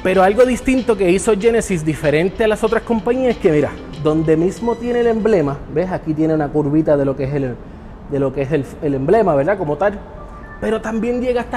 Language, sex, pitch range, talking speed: Spanish, male, 150-210 Hz, 195 wpm